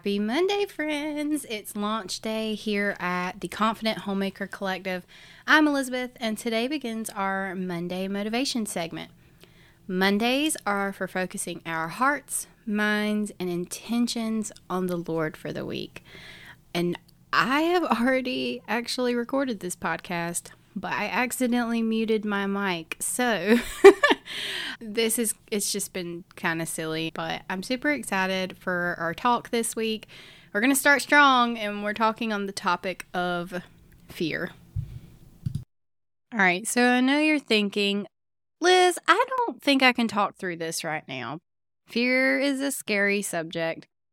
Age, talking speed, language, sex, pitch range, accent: 20-39, 140 wpm, English, female, 175-235 Hz, American